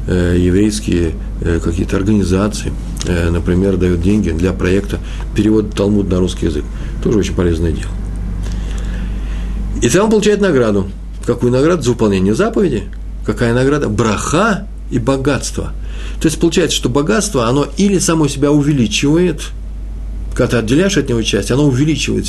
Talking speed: 135 wpm